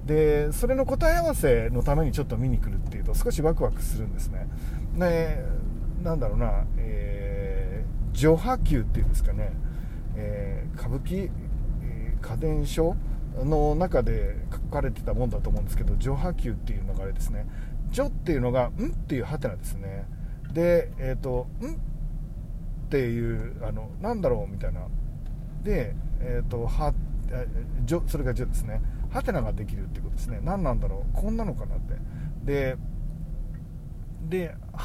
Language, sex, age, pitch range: Japanese, male, 40-59, 105-150 Hz